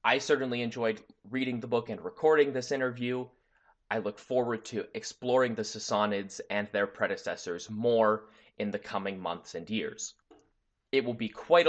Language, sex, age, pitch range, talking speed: English, male, 20-39, 110-150 Hz, 160 wpm